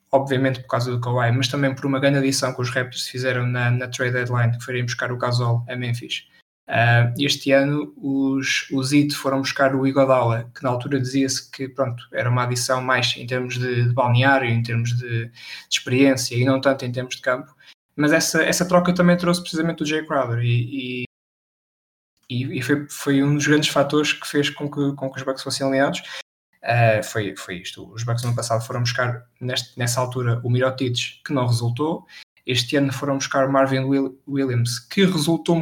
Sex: male